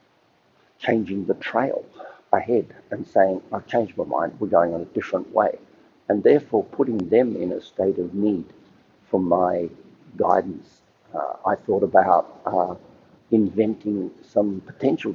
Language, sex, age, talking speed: English, male, 50-69, 145 wpm